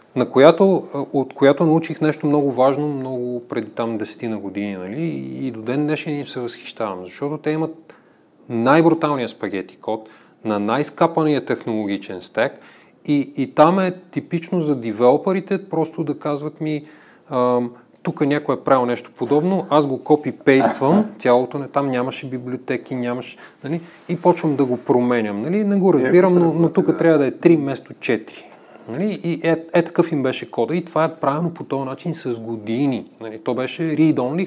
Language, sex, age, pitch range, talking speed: Bulgarian, male, 30-49, 120-160 Hz, 170 wpm